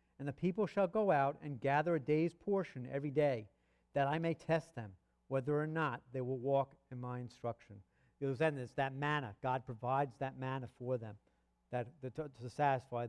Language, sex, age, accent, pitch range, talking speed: English, male, 50-69, American, 125-175 Hz, 190 wpm